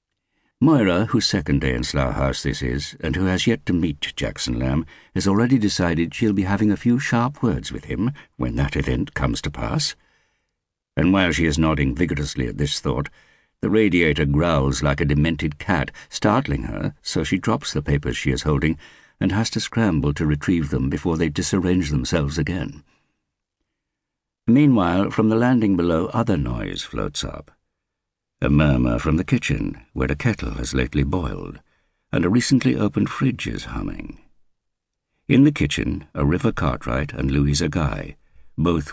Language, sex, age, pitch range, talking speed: English, male, 60-79, 70-100 Hz, 170 wpm